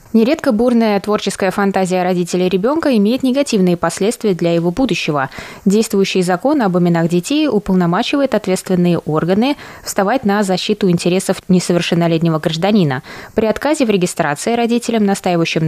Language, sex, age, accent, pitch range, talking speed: Russian, female, 20-39, native, 170-215 Hz, 125 wpm